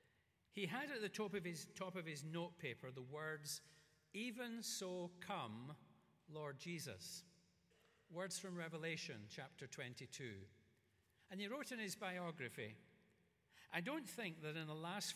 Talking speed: 145 wpm